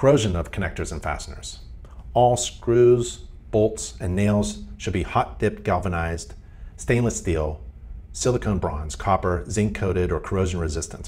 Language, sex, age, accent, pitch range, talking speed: English, male, 40-59, American, 75-105 Hz, 135 wpm